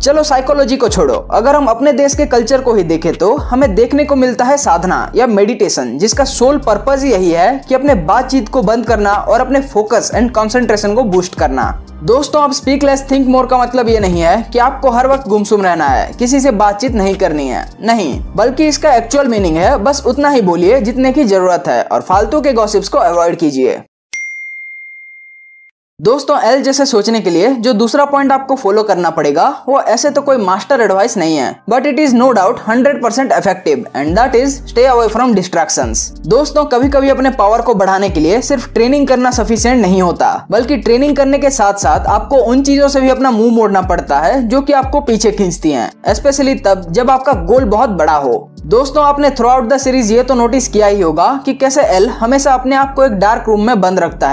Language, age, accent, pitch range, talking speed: Hindi, 20-39, native, 210-275 Hz, 205 wpm